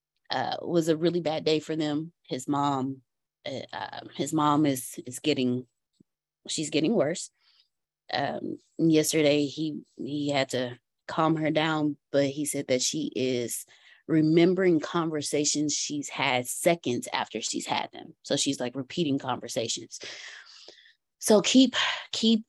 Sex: female